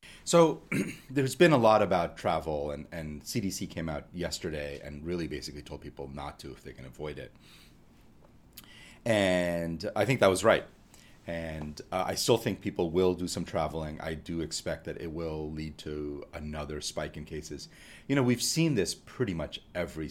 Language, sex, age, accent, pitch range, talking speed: English, male, 30-49, American, 75-90 Hz, 180 wpm